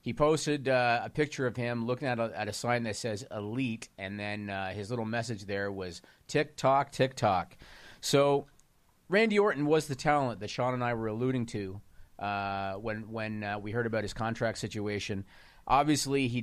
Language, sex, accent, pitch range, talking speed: English, male, American, 105-130 Hz, 185 wpm